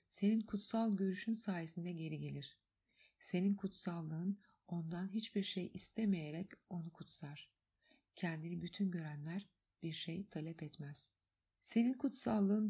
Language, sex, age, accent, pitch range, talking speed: Turkish, female, 50-69, native, 165-205 Hz, 110 wpm